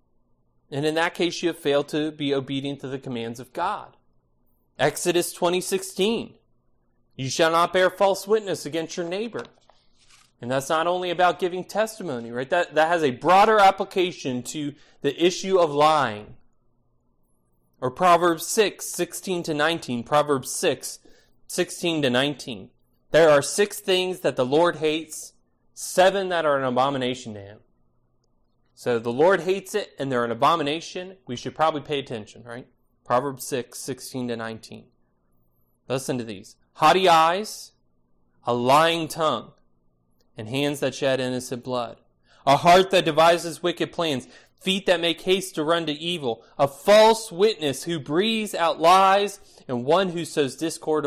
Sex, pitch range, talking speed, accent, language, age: male, 125-175 Hz, 155 wpm, American, English, 30-49